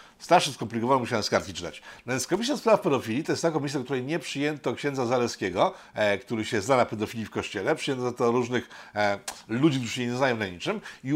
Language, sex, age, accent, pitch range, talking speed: Polish, male, 50-69, native, 110-155 Hz, 210 wpm